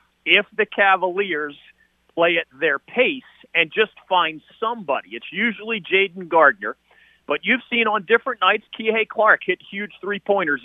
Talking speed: 145 wpm